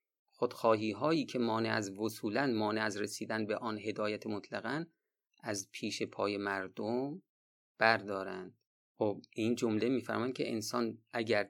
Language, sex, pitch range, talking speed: Persian, male, 105-135 Hz, 130 wpm